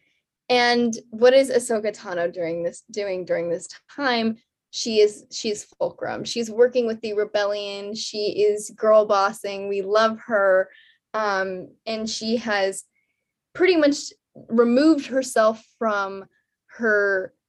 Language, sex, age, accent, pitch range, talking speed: English, female, 10-29, American, 195-245 Hz, 125 wpm